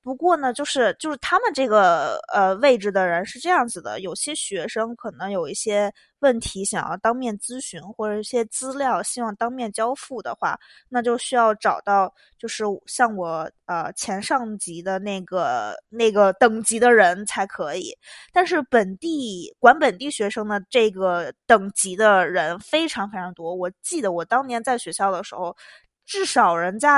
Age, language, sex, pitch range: 20-39, Chinese, female, 195-245 Hz